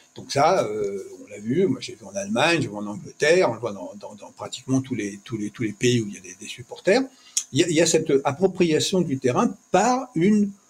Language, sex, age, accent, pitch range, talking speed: French, male, 50-69, French, 125-205 Hz, 270 wpm